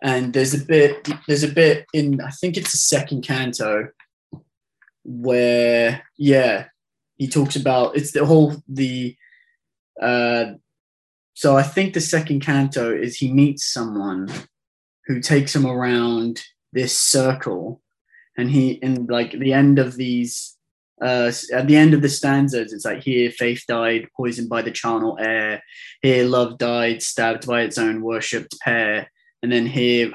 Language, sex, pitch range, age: English, male, 120-140 Hz, 20-39